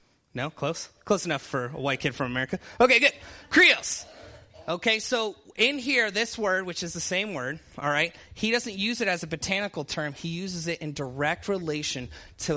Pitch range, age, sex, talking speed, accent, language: 125-185 Hz, 30-49, male, 195 wpm, American, English